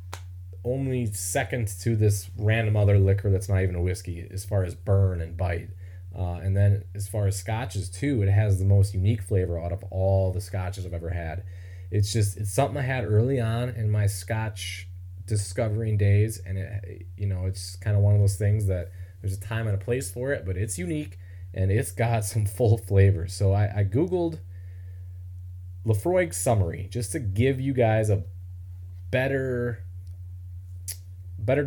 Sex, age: male, 20-39